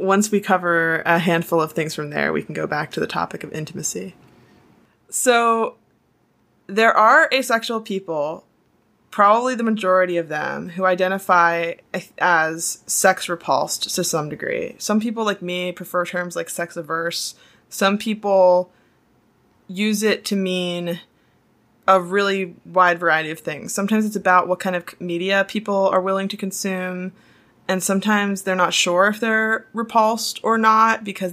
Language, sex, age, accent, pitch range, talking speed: English, female, 20-39, American, 170-200 Hz, 150 wpm